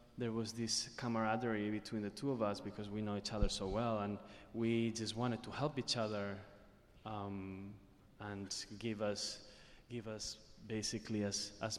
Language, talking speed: English, 170 wpm